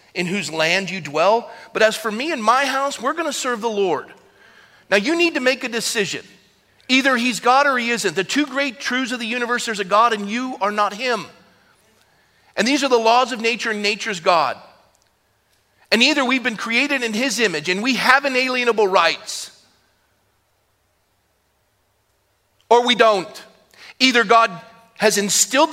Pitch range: 170-250 Hz